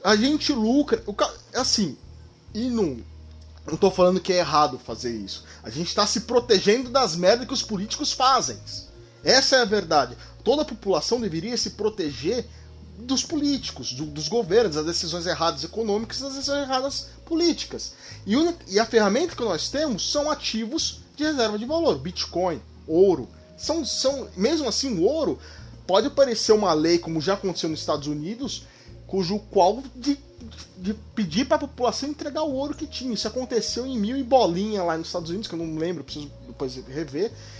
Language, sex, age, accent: Portuguese, male, 20-39, Brazilian